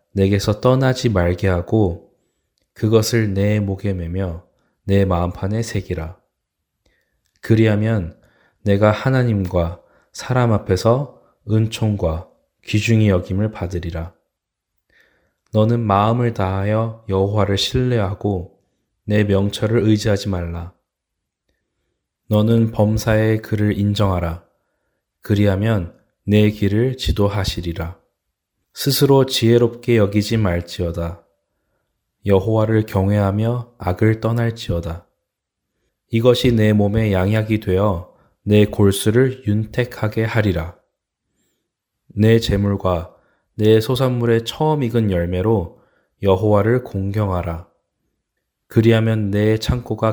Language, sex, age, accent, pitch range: Korean, male, 20-39, native, 95-115 Hz